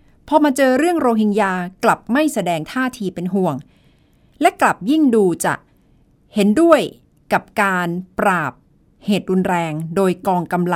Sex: female